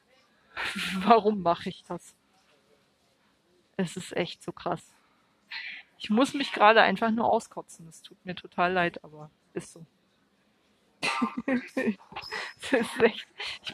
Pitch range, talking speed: 185-230 Hz, 120 wpm